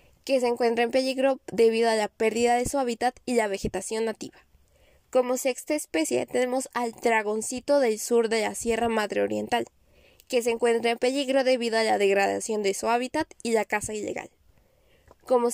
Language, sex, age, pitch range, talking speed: Spanish, female, 10-29, 220-265 Hz, 180 wpm